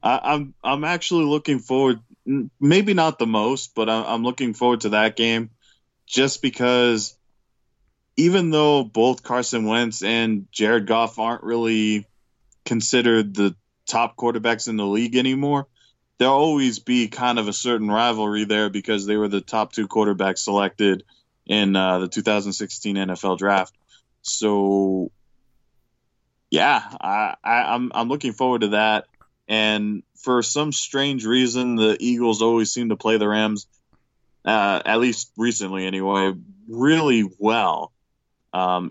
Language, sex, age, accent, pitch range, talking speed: English, male, 20-39, American, 105-125 Hz, 140 wpm